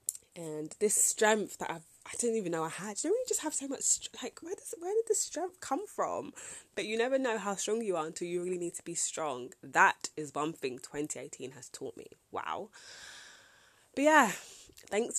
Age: 20-39